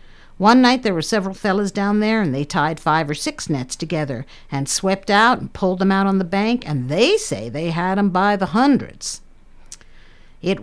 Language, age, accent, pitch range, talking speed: English, 60-79, American, 150-210 Hz, 205 wpm